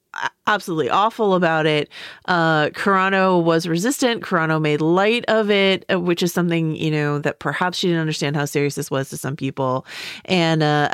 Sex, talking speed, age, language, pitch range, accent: female, 175 wpm, 30-49, English, 145-185 Hz, American